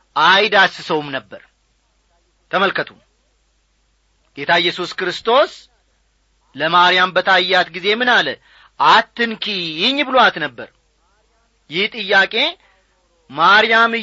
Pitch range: 180-255 Hz